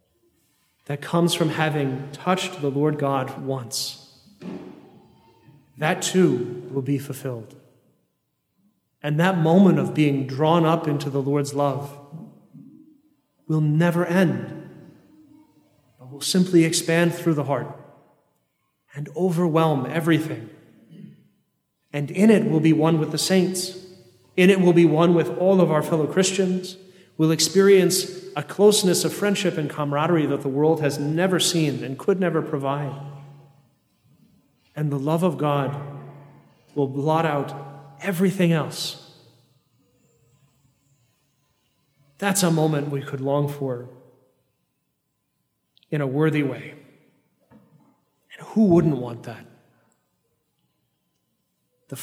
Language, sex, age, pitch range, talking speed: English, male, 30-49, 140-170 Hz, 120 wpm